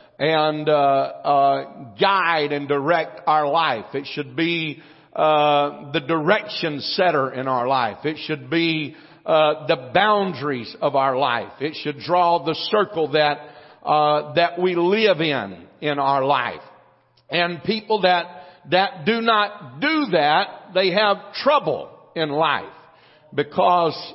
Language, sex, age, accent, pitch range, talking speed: English, male, 50-69, American, 150-185 Hz, 135 wpm